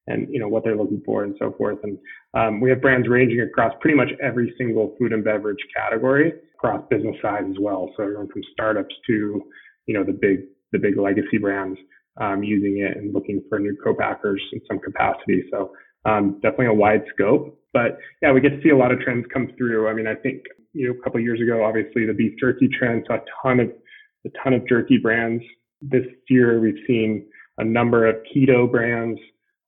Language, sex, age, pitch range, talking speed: English, male, 20-39, 105-120 Hz, 215 wpm